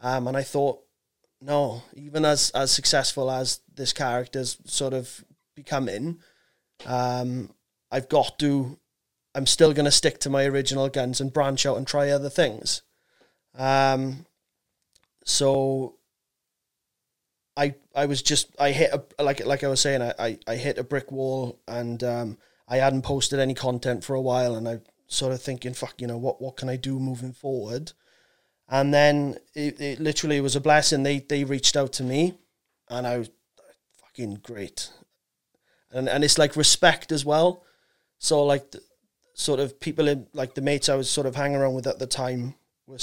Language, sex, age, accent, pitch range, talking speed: English, male, 20-39, British, 125-145 Hz, 180 wpm